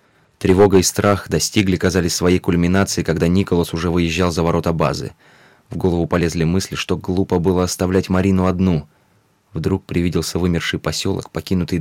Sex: male